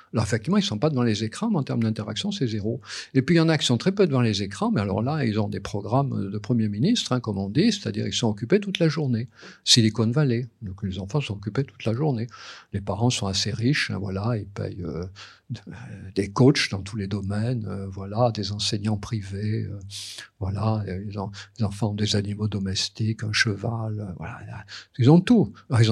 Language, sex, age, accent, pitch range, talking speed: French, male, 50-69, French, 105-135 Hz, 225 wpm